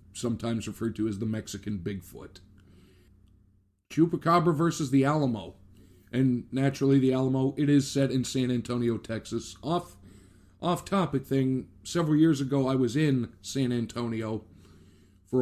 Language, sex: English, male